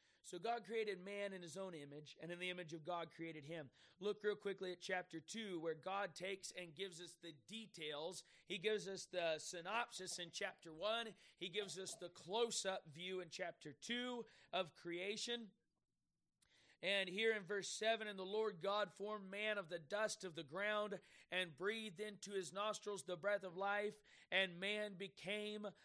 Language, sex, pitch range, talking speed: English, male, 185-215 Hz, 180 wpm